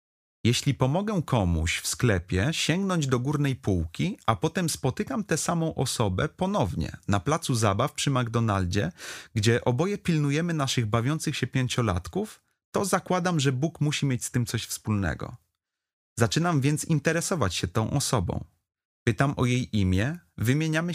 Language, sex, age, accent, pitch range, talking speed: Polish, male, 30-49, native, 110-155 Hz, 140 wpm